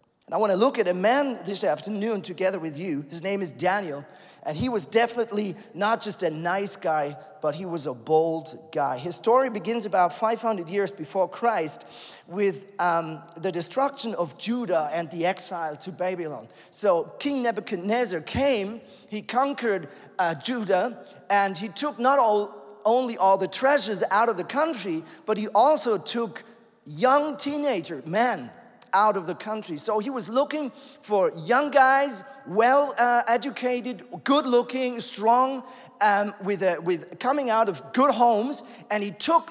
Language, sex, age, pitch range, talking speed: English, male, 40-59, 180-245 Hz, 160 wpm